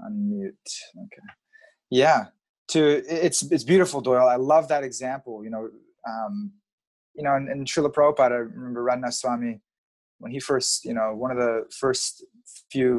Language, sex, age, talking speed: English, male, 20-39, 160 wpm